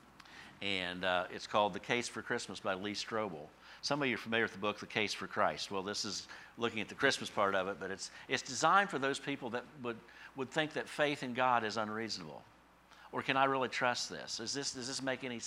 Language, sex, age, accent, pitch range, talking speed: English, male, 50-69, American, 100-125 Hz, 240 wpm